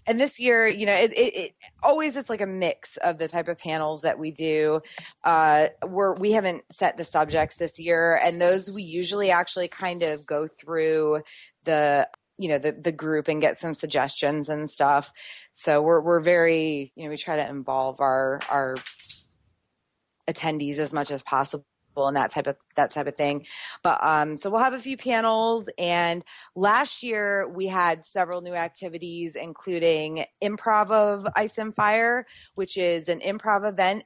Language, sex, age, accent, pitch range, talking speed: English, female, 20-39, American, 150-190 Hz, 180 wpm